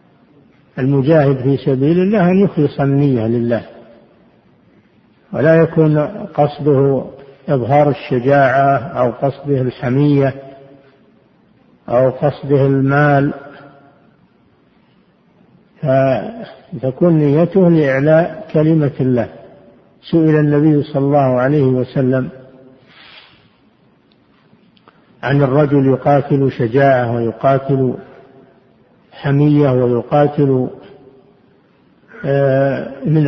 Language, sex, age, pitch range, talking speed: Arabic, male, 60-79, 135-160 Hz, 70 wpm